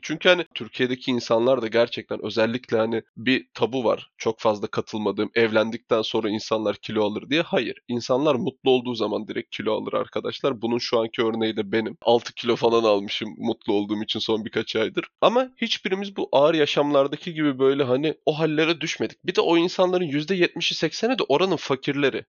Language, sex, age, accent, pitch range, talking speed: Turkish, male, 20-39, native, 115-160 Hz, 175 wpm